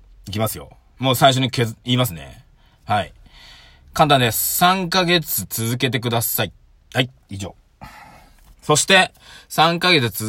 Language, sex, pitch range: Japanese, male, 95-155 Hz